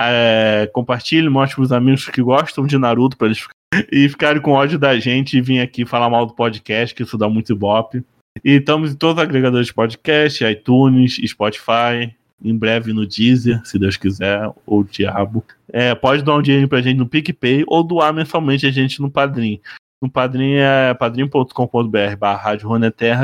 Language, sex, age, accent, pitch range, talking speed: Portuguese, male, 20-39, Brazilian, 115-135 Hz, 180 wpm